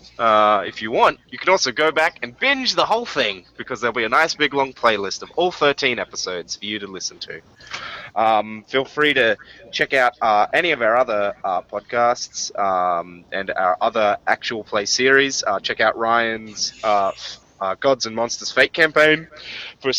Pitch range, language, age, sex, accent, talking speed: 110-160 Hz, English, 20-39, male, Australian, 190 wpm